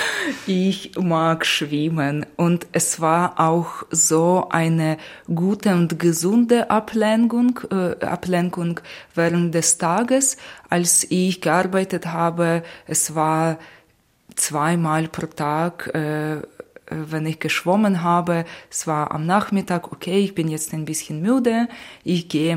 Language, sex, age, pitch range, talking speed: German, female, 20-39, 155-175 Hz, 120 wpm